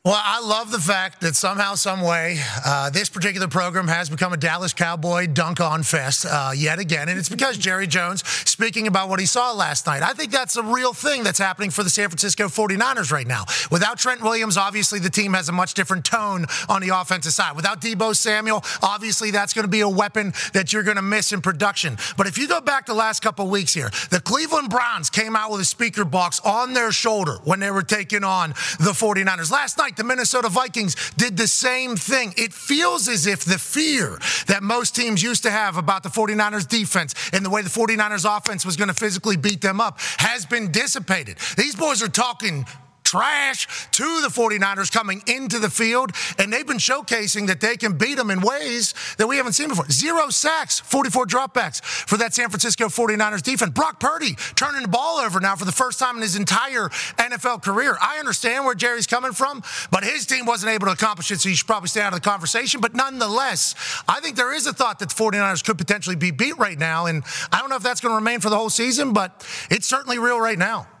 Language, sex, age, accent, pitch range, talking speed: English, male, 30-49, American, 185-235 Hz, 220 wpm